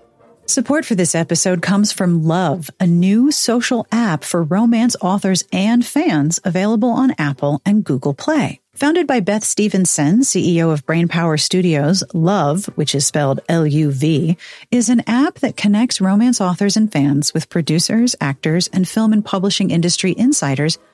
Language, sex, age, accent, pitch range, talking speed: English, female, 40-59, American, 160-225 Hz, 150 wpm